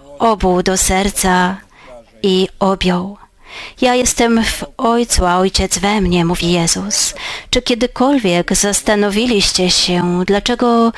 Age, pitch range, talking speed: 30-49, 180-220 Hz, 110 wpm